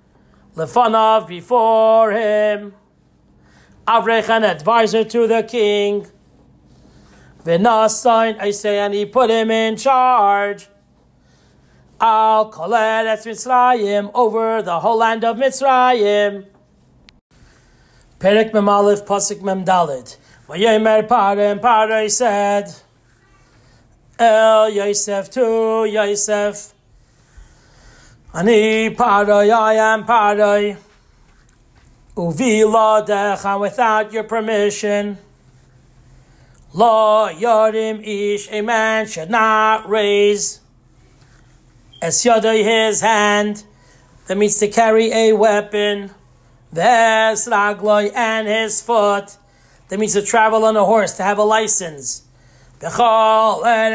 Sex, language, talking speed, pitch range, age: male, English, 90 wpm, 205-225 Hz, 40-59